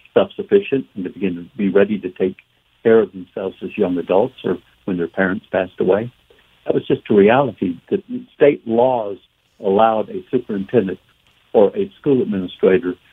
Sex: male